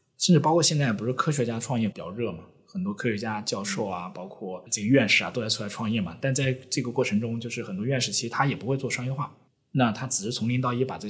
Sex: male